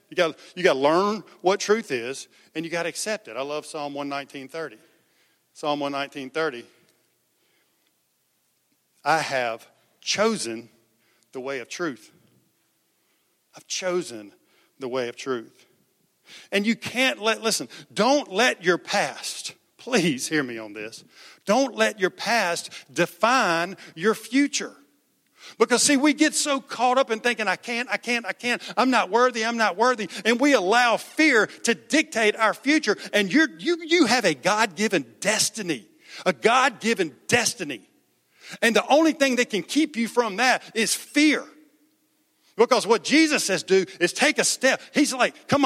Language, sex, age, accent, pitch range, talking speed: English, male, 50-69, American, 160-250 Hz, 155 wpm